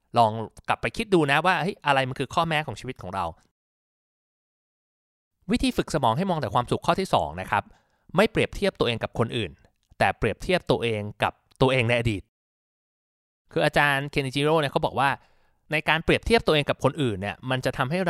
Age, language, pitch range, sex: 20-39, Thai, 125-175 Hz, male